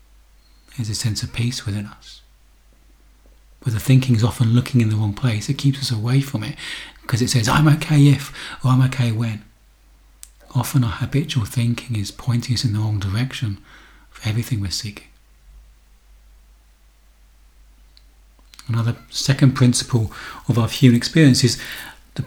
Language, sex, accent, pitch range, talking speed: English, male, British, 105-130 Hz, 155 wpm